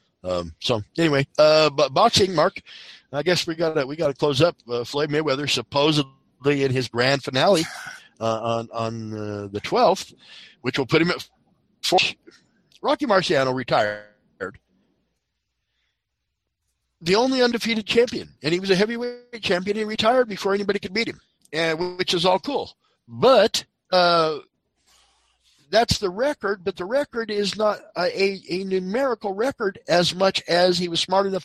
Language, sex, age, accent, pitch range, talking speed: English, male, 50-69, American, 155-255 Hz, 160 wpm